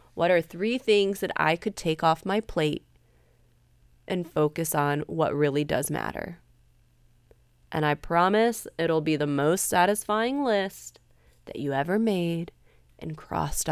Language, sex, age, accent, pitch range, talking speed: English, female, 20-39, American, 140-195 Hz, 145 wpm